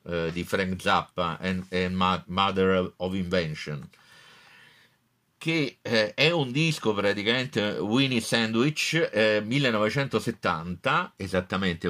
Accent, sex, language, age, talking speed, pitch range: native, male, Italian, 50-69, 90 wpm, 90-115 Hz